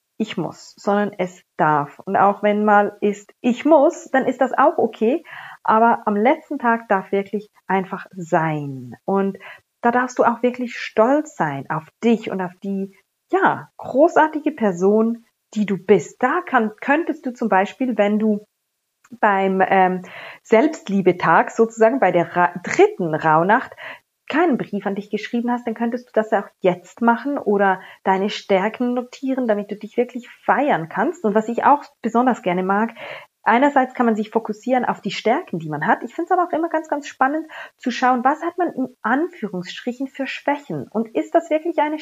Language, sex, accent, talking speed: German, female, German, 180 wpm